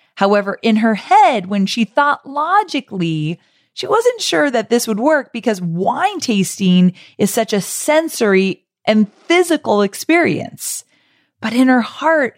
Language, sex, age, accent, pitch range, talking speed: English, female, 30-49, American, 155-225 Hz, 140 wpm